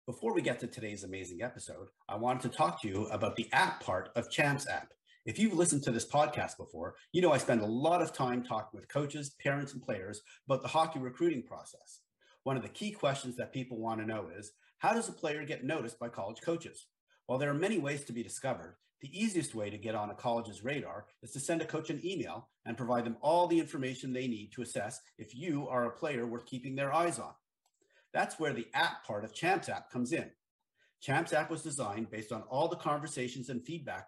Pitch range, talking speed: 120-155 Hz, 230 wpm